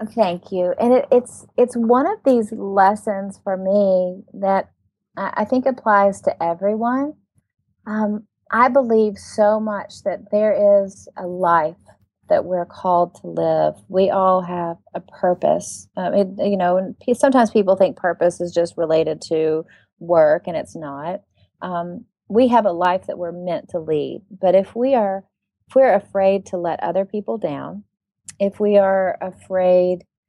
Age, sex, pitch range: 30-49, female, 175-215 Hz